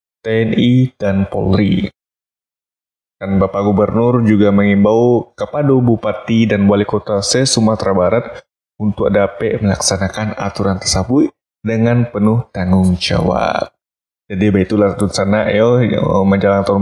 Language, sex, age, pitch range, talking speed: Indonesian, male, 20-39, 95-110 Hz, 105 wpm